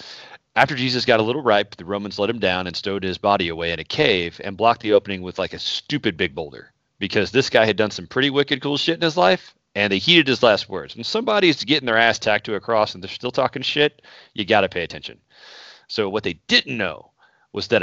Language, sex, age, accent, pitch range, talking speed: English, male, 40-59, American, 100-130 Hz, 245 wpm